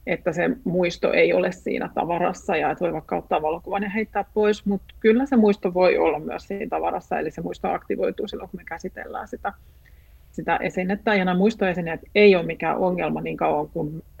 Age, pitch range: 40-59, 175-220 Hz